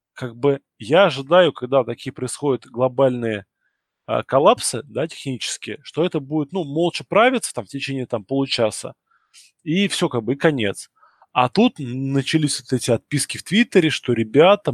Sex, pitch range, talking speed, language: male, 115-140 Hz, 160 wpm, Russian